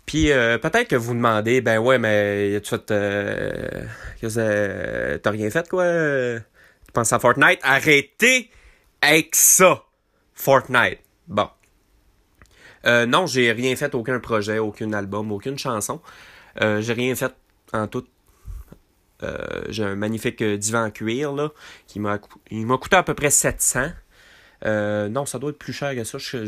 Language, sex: French, male